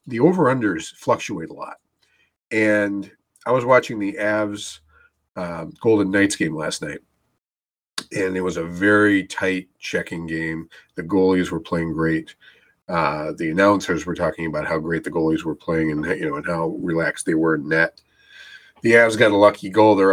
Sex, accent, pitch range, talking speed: male, American, 85-120 Hz, 180 wpm